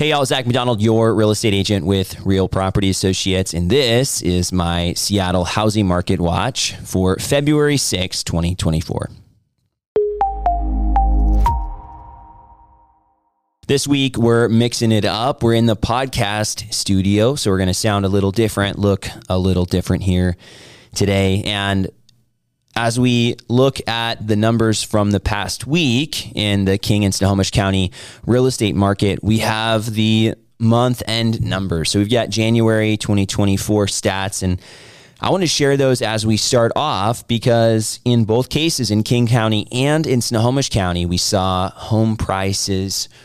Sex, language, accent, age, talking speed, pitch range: male, English, American, 20-39, 145 wpm, 95-120 Hz